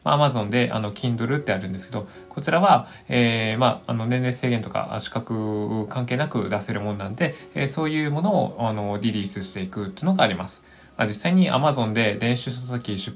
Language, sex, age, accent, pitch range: Japanese, male, 20-39, native, 105-140 Hz